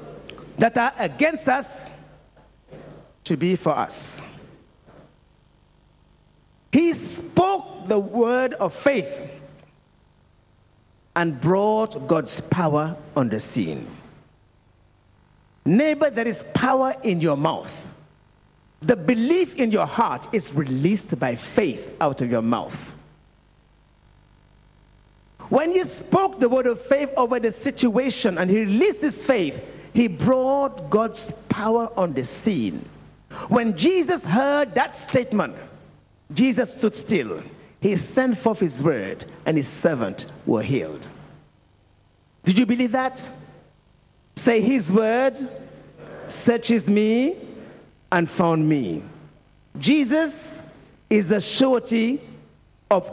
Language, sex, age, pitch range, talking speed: English, male, 50-69, 170-260 Hz, 110 wpm